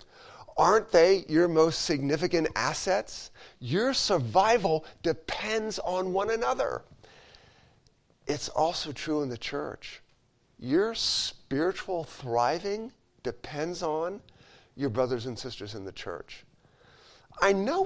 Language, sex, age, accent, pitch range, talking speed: English, male, 40-59, American, 130-180 Hz, 110 wpm